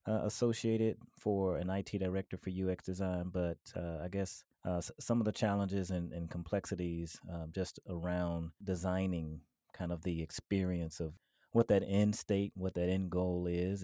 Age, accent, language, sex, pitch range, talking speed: 30-49, American, English, male, 90-105 Hz, 170 wpm